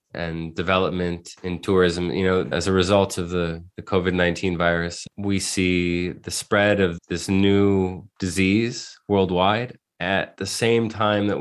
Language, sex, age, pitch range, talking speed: English, male, 20-39, 90-105 Hz, 145 wpm